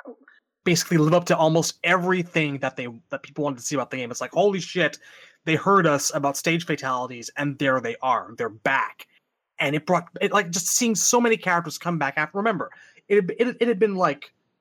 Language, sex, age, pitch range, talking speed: English, male, 30-49, 135-185 Hz, 215 wpm